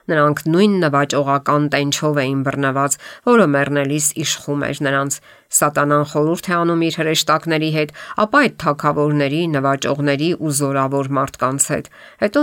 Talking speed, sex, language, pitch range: 125 wpm, female, English, 140-165 Hz